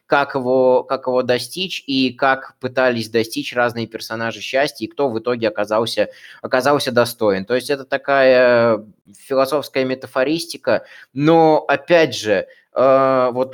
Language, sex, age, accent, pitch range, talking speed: Russian, male, 20-39, native, 125-160 Hz, 130 wpm